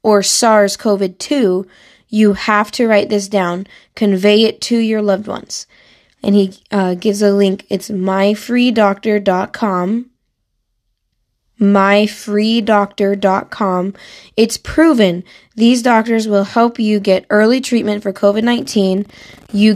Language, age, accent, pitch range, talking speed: English, 20-39, American, 195-225 Hz, 110 wpm